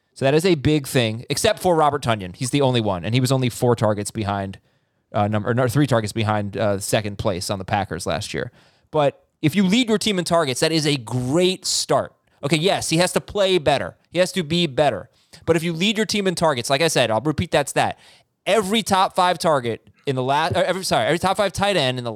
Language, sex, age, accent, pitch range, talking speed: English, male, 20-39, American, 130-185 Hz, 250 wpm